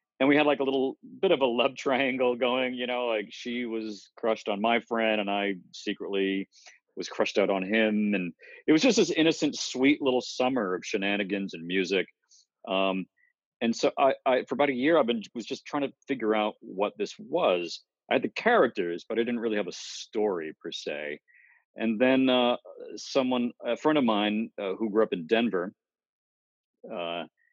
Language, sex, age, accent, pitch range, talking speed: English, male, 40-59, American, 95-130 Hz, 195 wpm